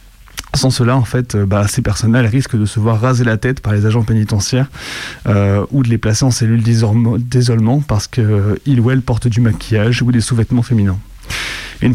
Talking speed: 200 wpm